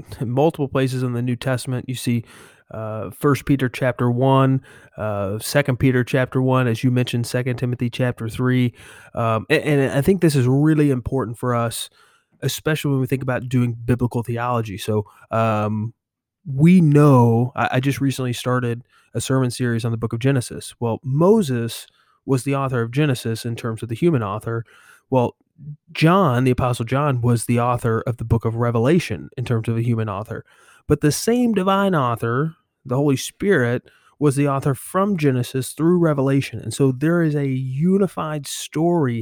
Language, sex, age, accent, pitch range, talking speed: English, male, 30-49, American, 120-140 Hz, 175 wpm